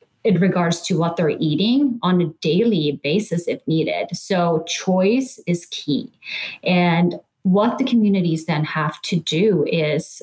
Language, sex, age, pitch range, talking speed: English, female, 30-49, 165-210 Hz, 145 wpm